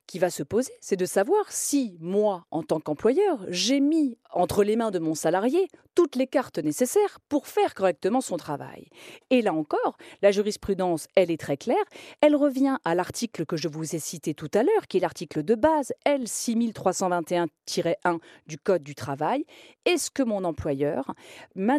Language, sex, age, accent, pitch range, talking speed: French, female, 40-59, French, 170-255 Hz, 180 wpm